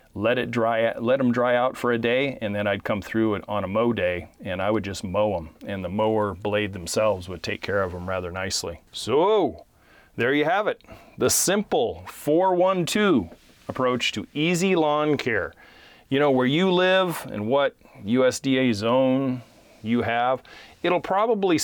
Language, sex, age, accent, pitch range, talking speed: English, male, 30-49, American, 110-145 Hz, 175 wpm